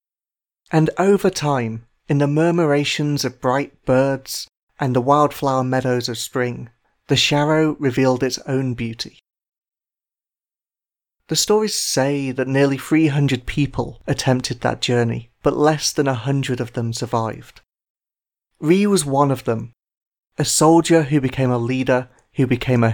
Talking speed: 140 wpm